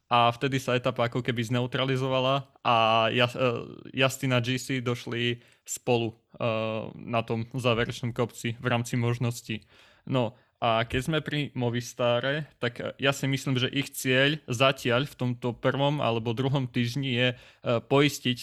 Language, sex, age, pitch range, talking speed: Slovak, male, 20-39, 120-130 Hz, 135 wpm